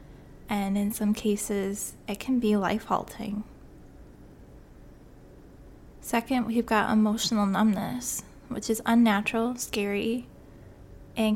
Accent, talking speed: American, 95 wpm